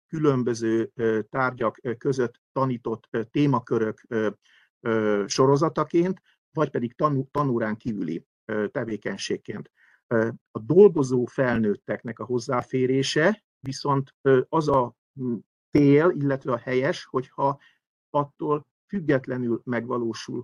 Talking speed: 80 wpm